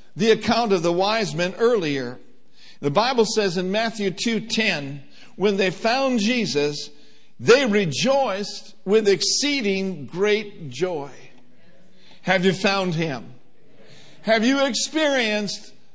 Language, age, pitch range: English, 60-79, 165-235 Hz